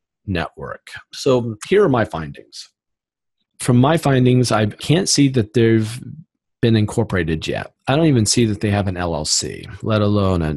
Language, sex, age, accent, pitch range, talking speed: English, male, 40-59, American, 105-130 Hz, 160 wpm